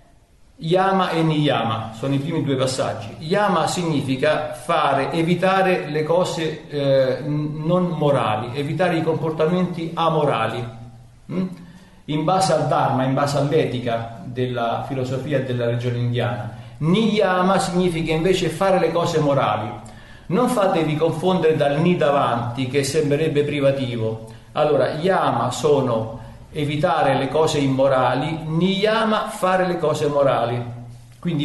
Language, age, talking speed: Italian, 50-69, 120 wpm